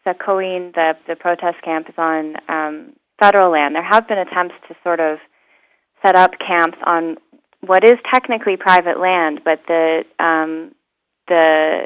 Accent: American